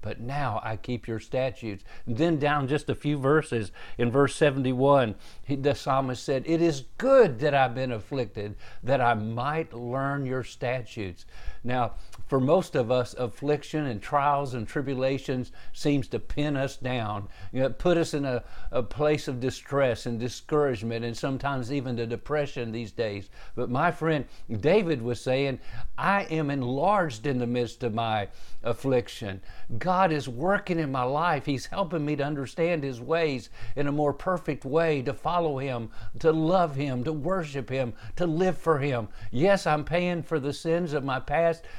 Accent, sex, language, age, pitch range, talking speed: American, male, English, 50-69, 120-155 Hz, 170 wpm